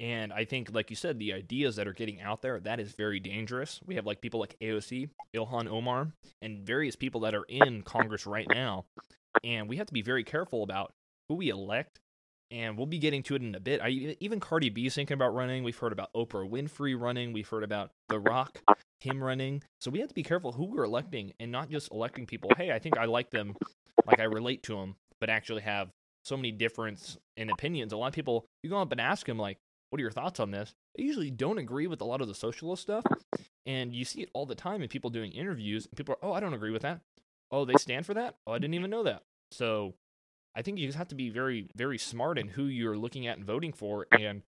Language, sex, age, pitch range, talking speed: English, male, 20-39, 110-140 Hz, 250 wpm